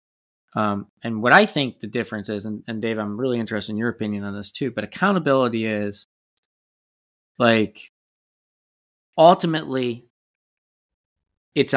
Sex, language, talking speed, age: male, English, 135 wpm, 30-49